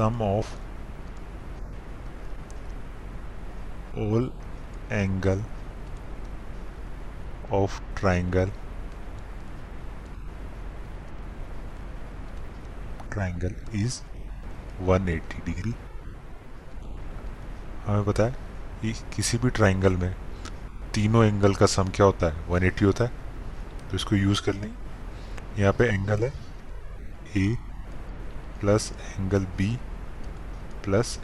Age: 20-39